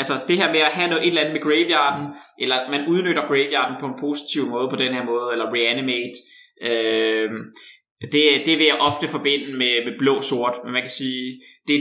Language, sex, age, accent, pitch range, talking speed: Danish, male, 20-39, native, 125-150 Hz, 210 wpm